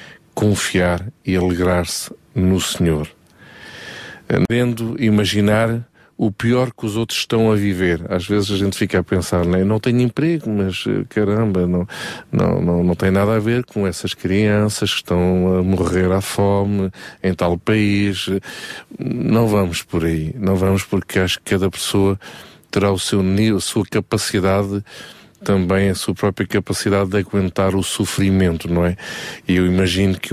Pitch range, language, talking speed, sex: 90-105 Hz, Portuguese, 160 wpm, male